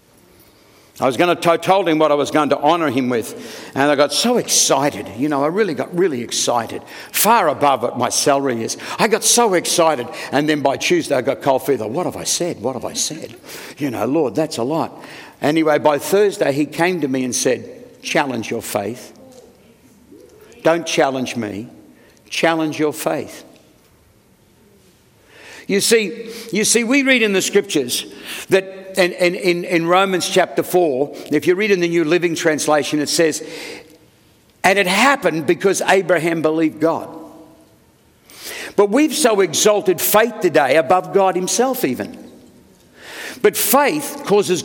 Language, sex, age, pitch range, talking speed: English, male, 60-79, 160-225 Hz, 165 wpm